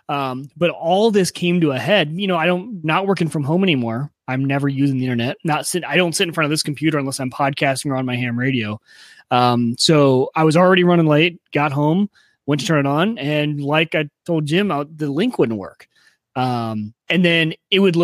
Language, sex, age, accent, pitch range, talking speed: English, male, 30-49, American, 135-175 Hz, 230 wpm